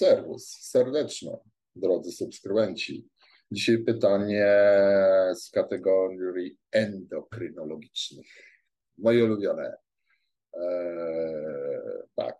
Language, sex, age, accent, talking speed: Polish, male, 50-69, native, 60 wpm